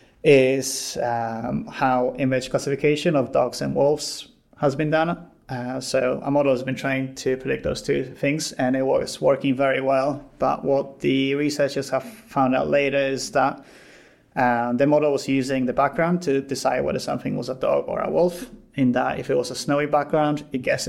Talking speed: 190 wpm